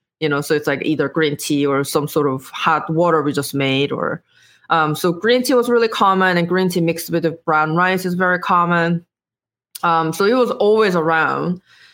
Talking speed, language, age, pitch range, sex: 205 wpm, English, 20-39, 155-190 Hz, female